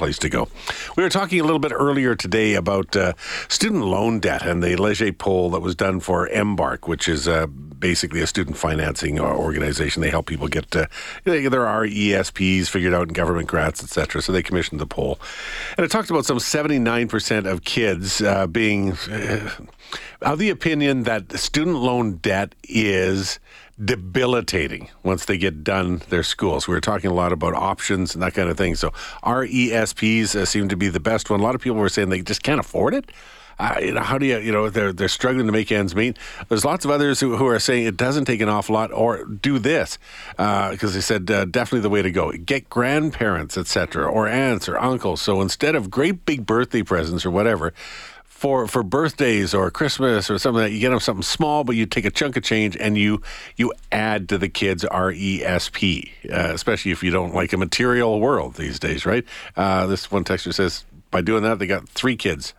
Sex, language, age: male, English, 50-69